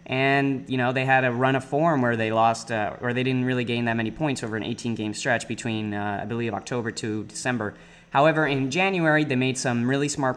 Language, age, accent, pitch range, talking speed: English, 20-39, American, 120-145 Hz, 230 wpm